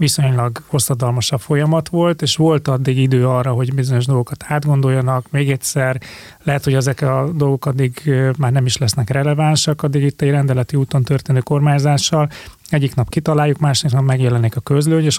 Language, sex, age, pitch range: Hungarian, male, 30-49, 130-150 Hz